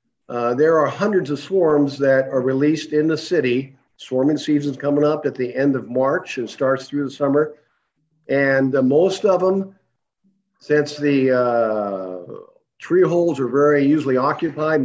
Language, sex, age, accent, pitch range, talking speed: English, male, 50-69, American, 130-155 Hz, 160 wpm